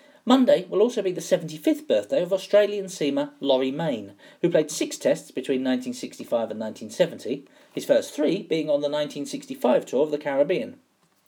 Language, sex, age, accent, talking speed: English, male, 40-59, British, 165 wpm